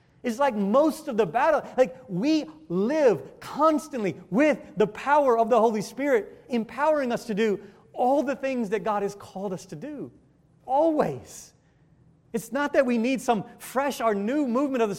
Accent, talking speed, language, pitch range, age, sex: American, 175 wpm, English, 175-255 Hz, 30-49, male